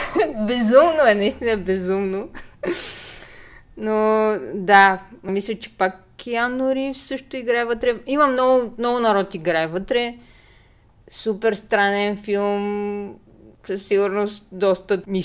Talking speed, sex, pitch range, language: 105 wpm, female, 170-215 Hz, Bulgarian